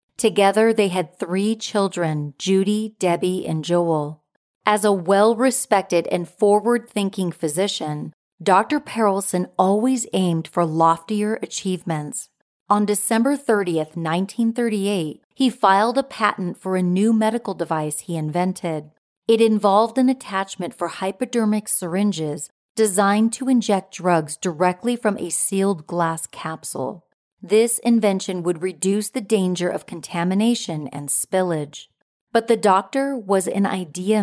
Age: 40-59